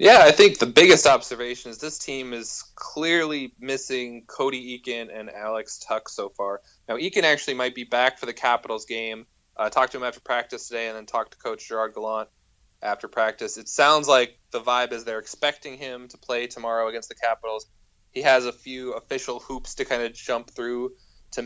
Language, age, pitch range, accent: English, 20-39, 115-130 Hz, American